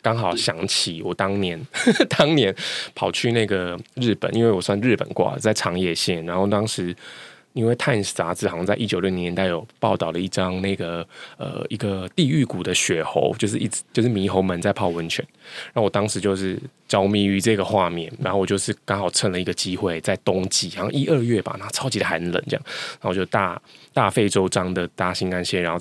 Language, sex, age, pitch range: Chinese, male, 20-39, 90-110 Hz